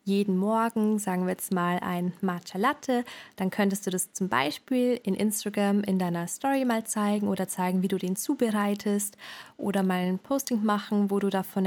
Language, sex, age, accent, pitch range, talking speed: German, female, 20-39, German, 195-240 Hz, 185 wpm